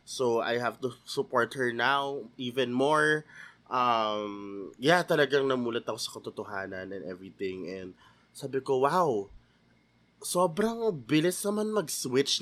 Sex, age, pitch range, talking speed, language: male, 20-39, 115-155 Hz, 125 wpm, Filipino